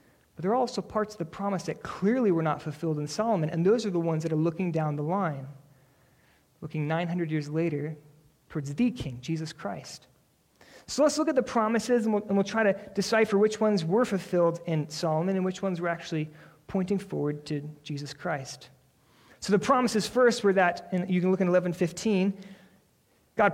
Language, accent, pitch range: English, American, 150-205 Hz